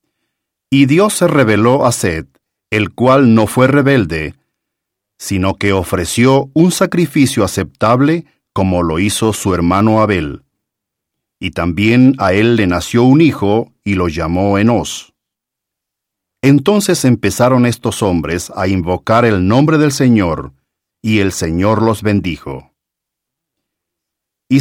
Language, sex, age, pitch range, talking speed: English, male, 50-69, 95-130 Hz, 125 wpm